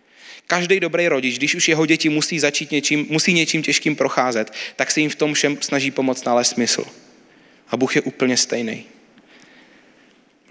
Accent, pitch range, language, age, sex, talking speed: native, 120-160 Hz, Czech, 30-49, male, 170 wpm